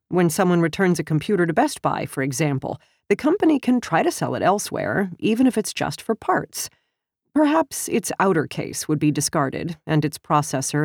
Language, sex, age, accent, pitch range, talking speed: English, female, 40-59, American, 145-195 Hz, 190 wpm